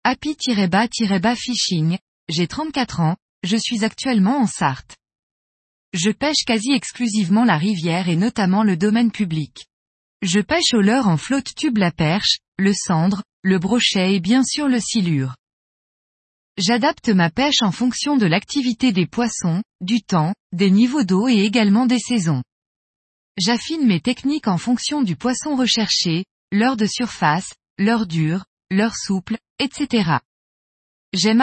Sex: female